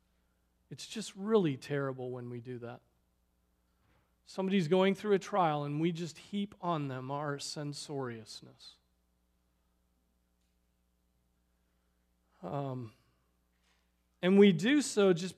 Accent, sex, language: American, male, English